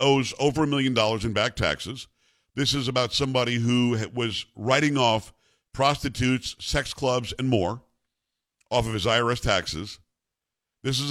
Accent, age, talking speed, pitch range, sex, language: American, 50-69, 150 wpm, 110-140 Hz, male, English